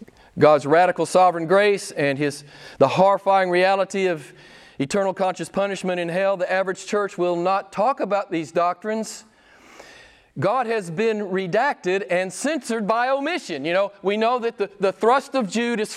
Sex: male